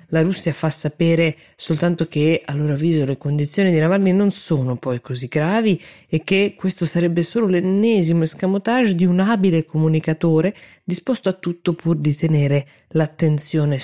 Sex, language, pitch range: female, Italian, 135-175 Hz